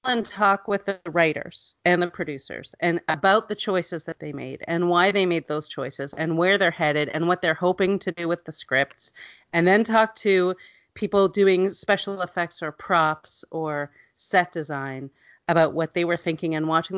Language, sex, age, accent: English, female, 40-59, American